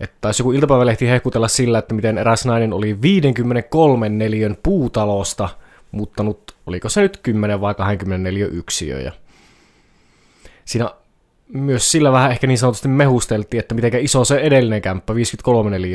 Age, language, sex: 20-39, Finnish, male